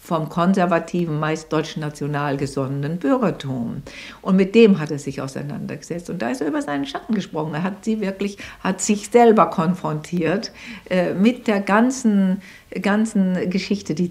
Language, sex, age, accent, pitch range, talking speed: German, female, 60-79, German, 145-195 Hz, 155 wpm